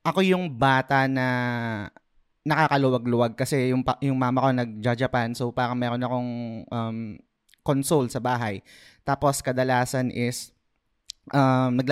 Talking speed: 120 wpm